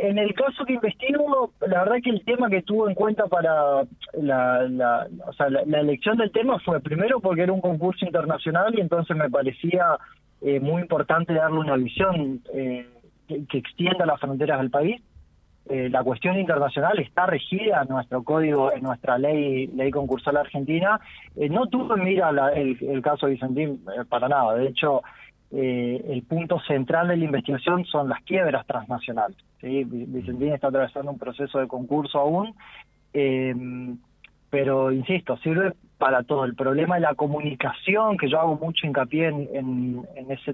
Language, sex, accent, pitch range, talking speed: Spanish, male, Argentinian, 135-175 Hz, 180 wpm